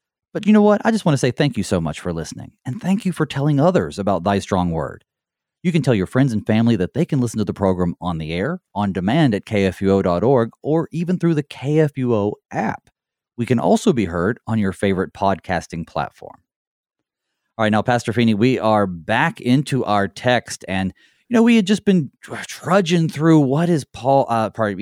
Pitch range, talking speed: 100-155 Hz, 210 wpm